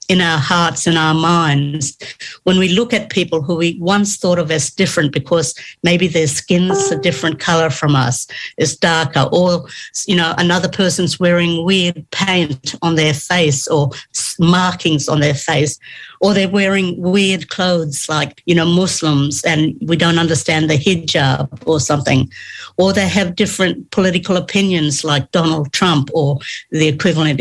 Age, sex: 60-79, female